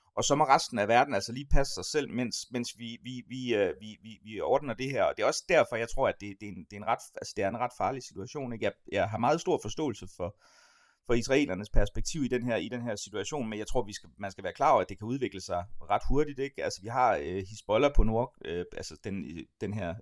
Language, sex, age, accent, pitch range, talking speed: Danish, male, 30-49, native, 100-135 Hz, 280 wpm